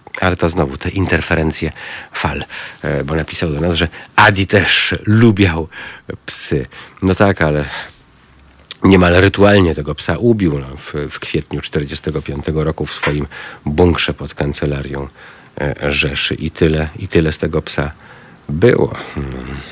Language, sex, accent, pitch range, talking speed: Polish, male, native, 75-95 Hz, 130 wpm